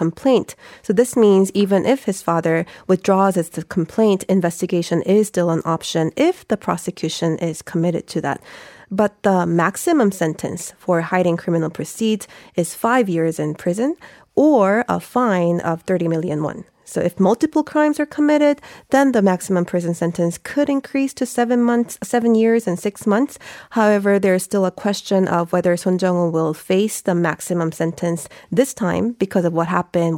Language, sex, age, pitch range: Korean, female, 30-49, 170-210 Hz